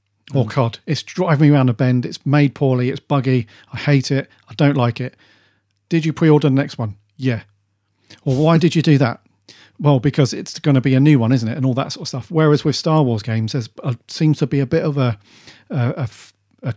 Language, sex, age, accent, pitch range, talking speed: English, male, 40-59, British, 115-145 Hz, 230 wpm